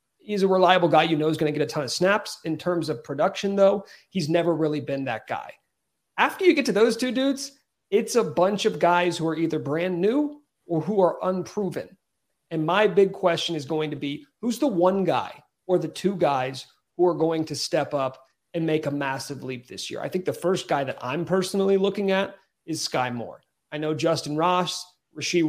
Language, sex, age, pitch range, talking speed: English, male, 40-59, 150-190 Hz, 220 wpm